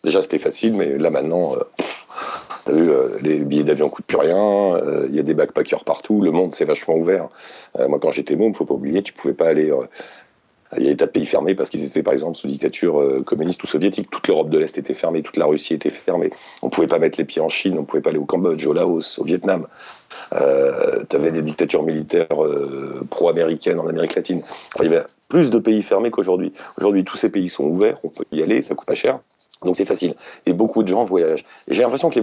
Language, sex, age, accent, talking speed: French, male, 40-59, French, 265 wpm